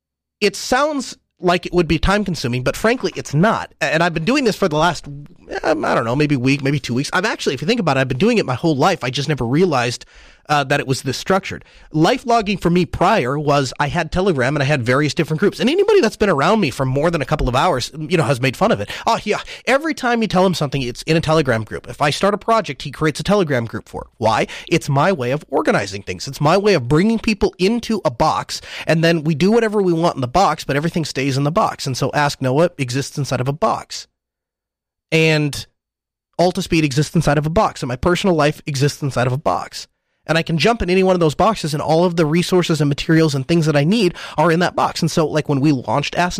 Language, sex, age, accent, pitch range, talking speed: English, male, 30-49, American, 140-190 Hz, 265 wpm